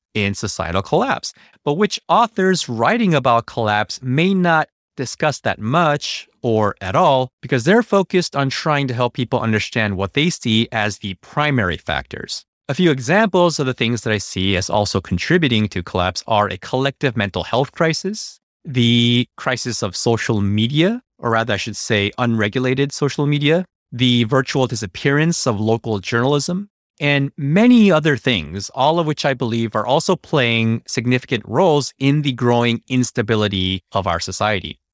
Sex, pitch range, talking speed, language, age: male, 105-145 Hz, 160 wpm, English, 30-49